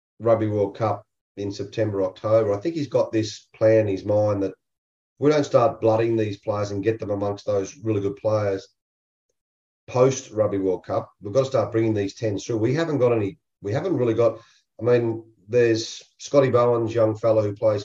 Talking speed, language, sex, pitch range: 195 wpm, English, male, 100-115 Hz